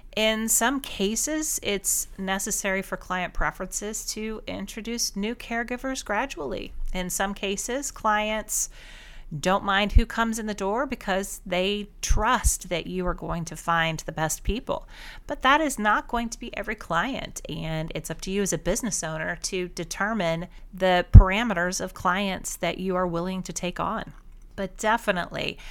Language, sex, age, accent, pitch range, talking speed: English, female, 40-59, American, 170-220 Hz, 160 wpm